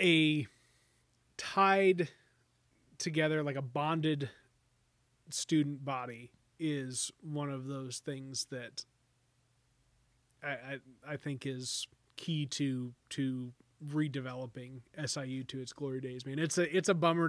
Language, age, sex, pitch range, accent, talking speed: English, 20-39, male, 135-165 Hz, American, 120 wpm